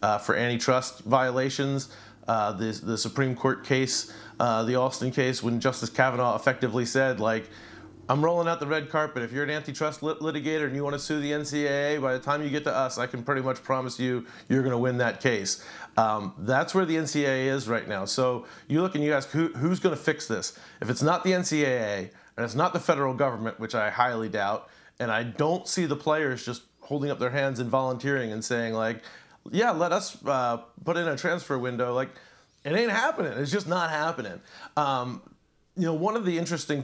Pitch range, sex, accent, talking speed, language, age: 125-150 Hz, male, American, 215 wpm, English, 40-59